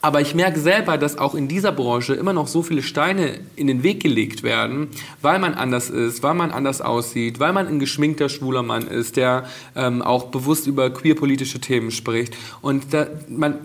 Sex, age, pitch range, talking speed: male, 40-59, 130-160 Hz, 200 wpm